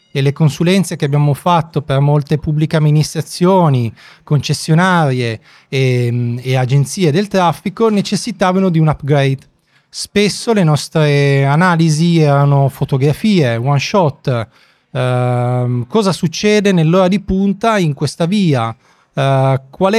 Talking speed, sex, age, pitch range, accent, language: 115 wpm, male, 30-49, 130-175 Hz, native, Italian